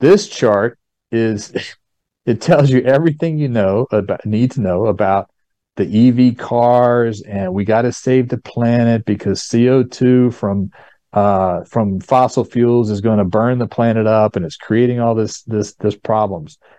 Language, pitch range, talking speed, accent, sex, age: English, 105-125 Hz, 165 wpm, American, male, 40-59